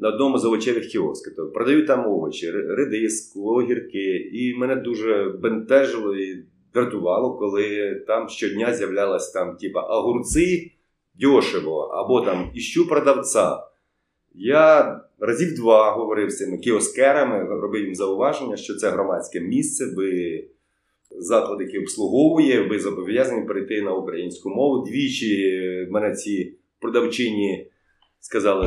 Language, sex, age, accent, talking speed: Ukrainian, male, 30-49, native, 120 wpm